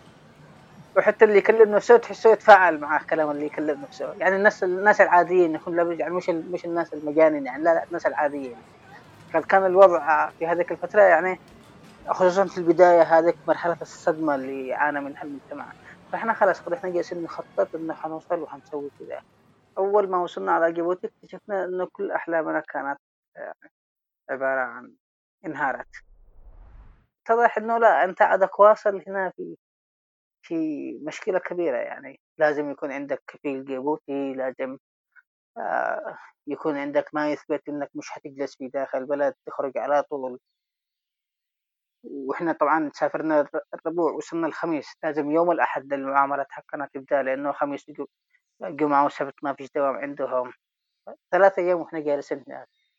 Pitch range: 145-190 Hz